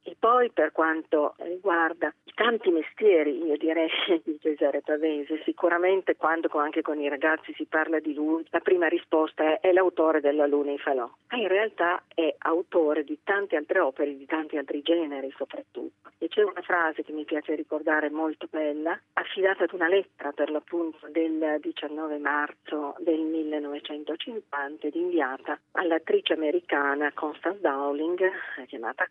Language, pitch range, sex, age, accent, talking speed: Italian, 150-180 Hz, female, 40-59, native, 155 wpm